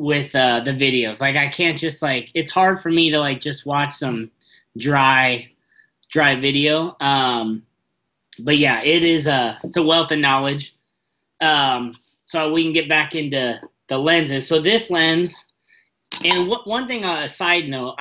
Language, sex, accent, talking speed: English, male, American, 170 wpm